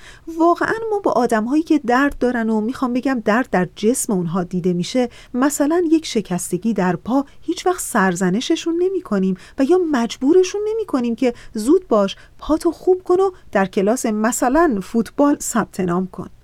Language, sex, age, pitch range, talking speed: Persian, female, 40-59, 195-265 Hz, 155 wpm